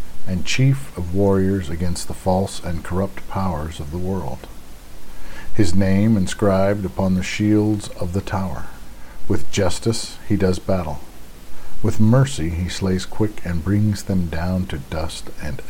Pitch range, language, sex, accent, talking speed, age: 80-105 Hz, English, male, American, 150 wpm, 50-69